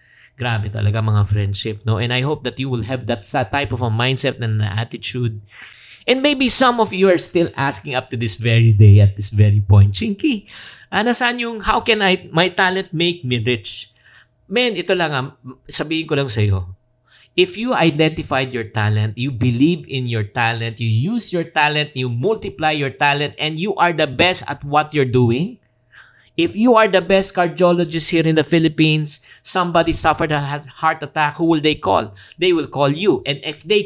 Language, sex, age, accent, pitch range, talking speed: English, male, 50-69, Filipino, 115-170 Hz, 190 wpm